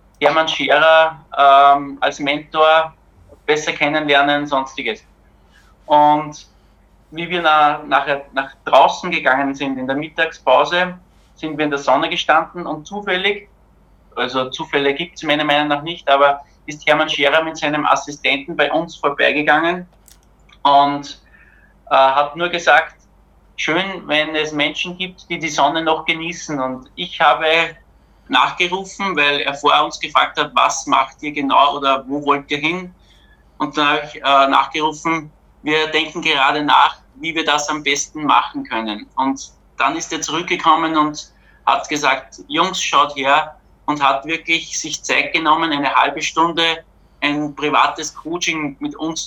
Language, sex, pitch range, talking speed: German, male, 140-160 Hz, 150 wpm